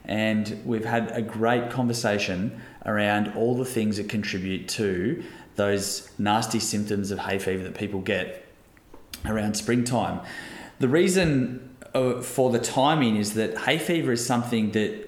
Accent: Australian